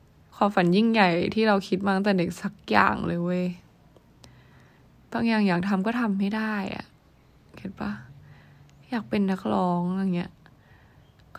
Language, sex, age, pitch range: Thai, female, 20-39, 175-220 Hz